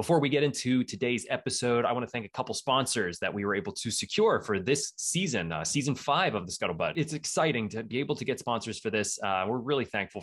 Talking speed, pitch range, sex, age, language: 245 wpm, 110-150 Hz, male, 20-39, English